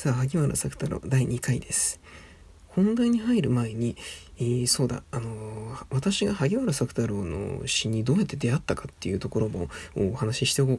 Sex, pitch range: male, 115-185 Hz